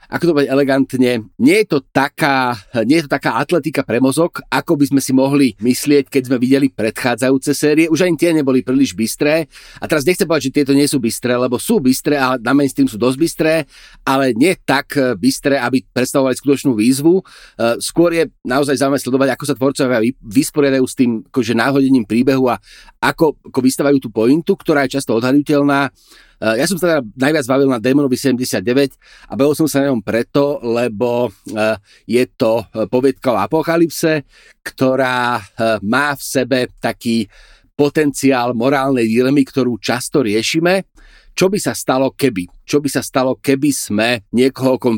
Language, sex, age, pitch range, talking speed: Slovak, male, 40-59, 120-145 Hz, 170 wpm